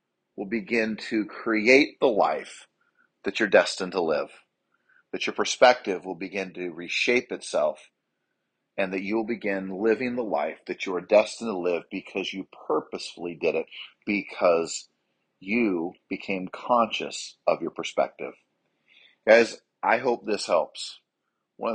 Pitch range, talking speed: 90-115 Hz, 140 wpm